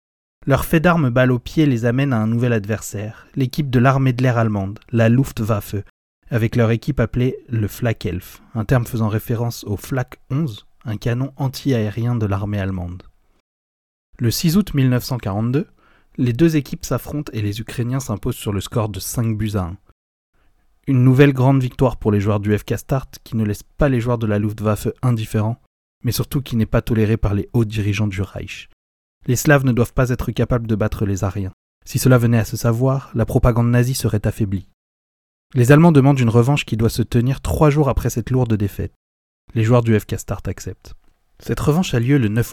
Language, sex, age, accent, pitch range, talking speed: French, male, 30-49, French, 105-130 Hz, 200 wpm